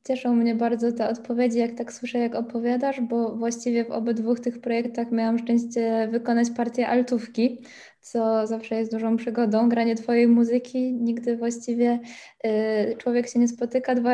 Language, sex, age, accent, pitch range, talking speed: Polish, female, 10-29, native, 220-240 Hz, 155 wpm